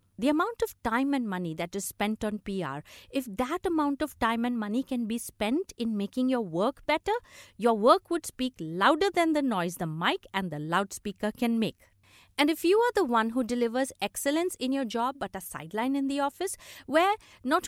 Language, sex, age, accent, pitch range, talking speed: English, female, 50-69, Indian, 195-280 Hz, 205 wpm